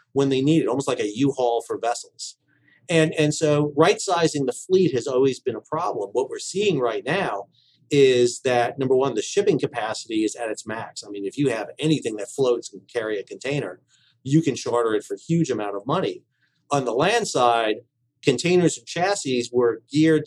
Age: 40-59